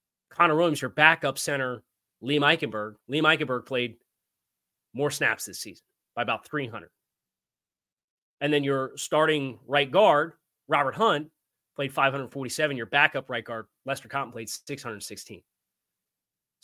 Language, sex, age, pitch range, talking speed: English, male, 30-49, 120-165 Hz, 125 wpm